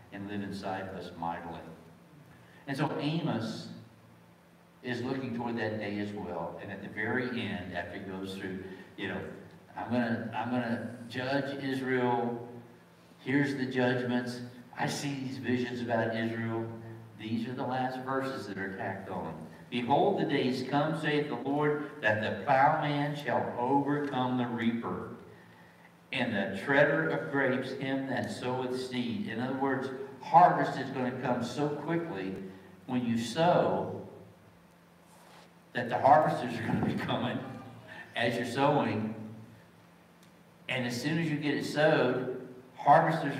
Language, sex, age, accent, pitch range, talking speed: English, male, 60-79, American, 105-140 Hz, 150 wpm